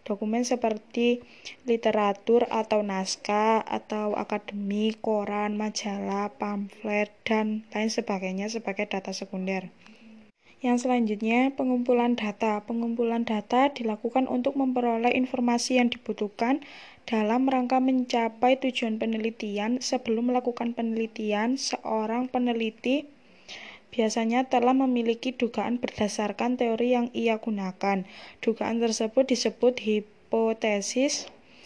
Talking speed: 95 wpm